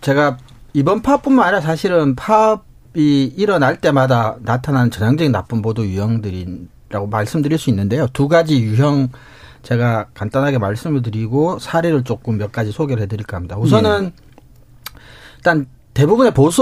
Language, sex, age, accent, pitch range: Korean, male, 40-59, native, 115-160 Hz